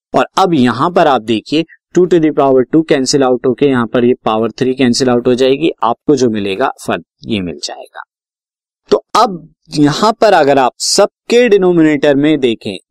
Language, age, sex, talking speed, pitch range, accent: Hindi, 20-39, male, 185 wpm, 125-165 Hz, native